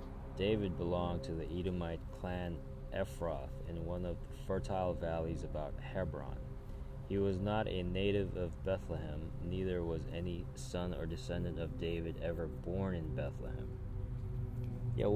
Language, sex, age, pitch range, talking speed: English, male, 20-39, 80-105 Hz, 140 wpm